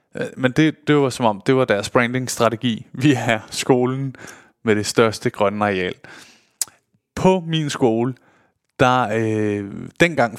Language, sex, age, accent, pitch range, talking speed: Danish, male, 20-39, native, 125-155 Hz, 140 wpm